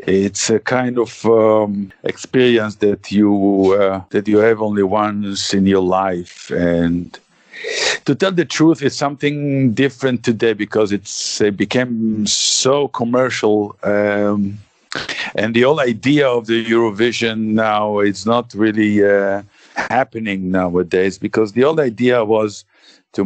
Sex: male